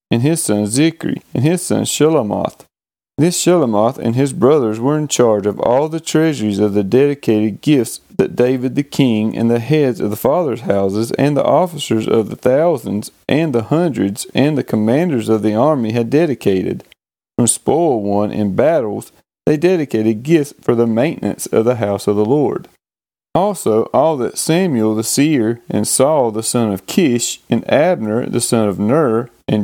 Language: English